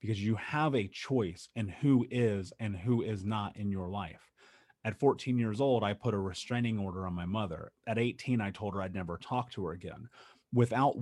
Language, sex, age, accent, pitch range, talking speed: English, male, 30-49, American, 105-130 Hz, 215 wpm